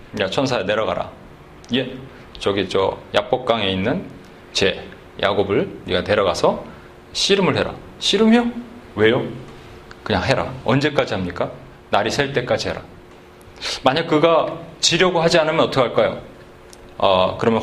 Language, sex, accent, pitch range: Korean, male, native, 110-160 Hz